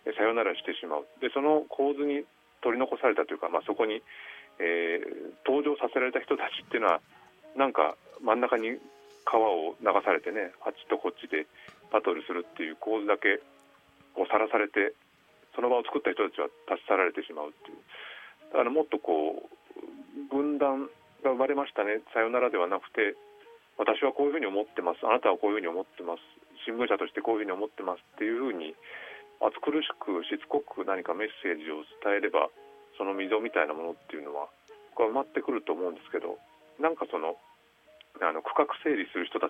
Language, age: Japanese, 40-59